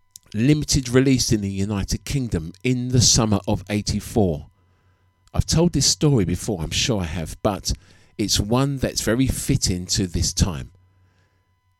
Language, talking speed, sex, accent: English, 145 wpm, male, British